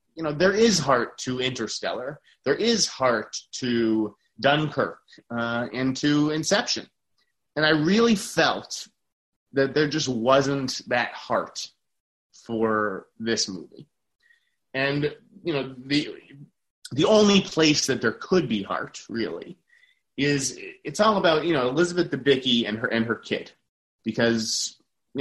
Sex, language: male, English